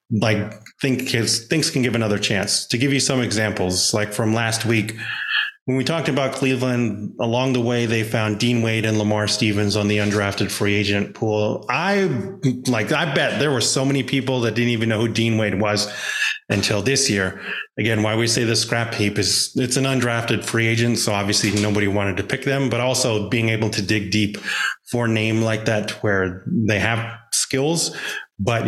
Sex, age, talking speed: male, 30-49, 195 wpm